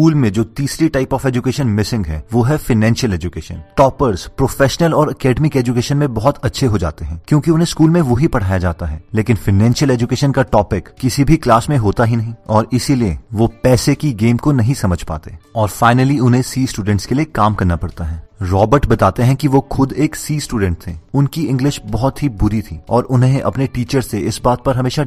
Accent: native